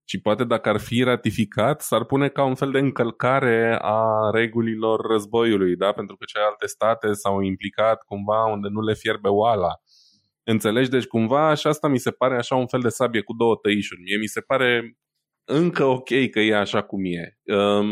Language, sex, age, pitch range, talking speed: Romanian, male, 20-39, 95-115 Hz, 190 wpm